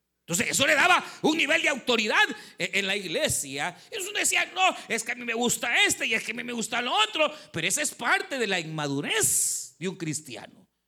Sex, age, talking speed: male, 50-69, 220 wpm